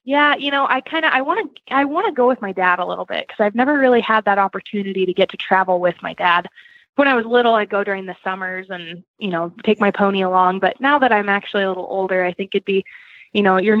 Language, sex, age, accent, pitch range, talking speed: English, female, 20-39, American, 185-220 Hz, 280 wpm